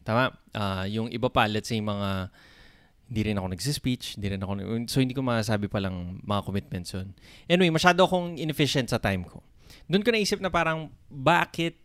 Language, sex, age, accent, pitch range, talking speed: Filipino, male, 20-39, native, 105-140 Hz, 180 wpm